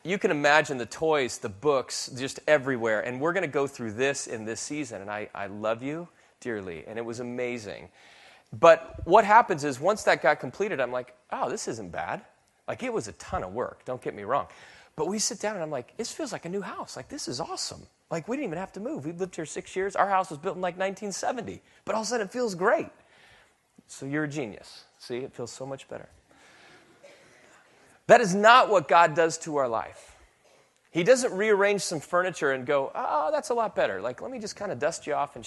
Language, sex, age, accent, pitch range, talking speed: English, male, 30-49, American, 130-190 Hz, 235 wpm